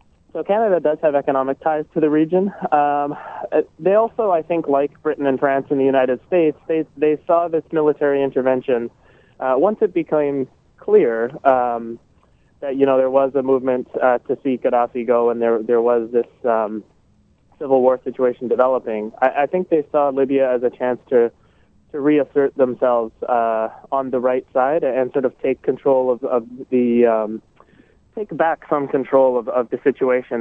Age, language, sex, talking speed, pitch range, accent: 20-39, English, male, 180 wpm, 120-145 Hz, American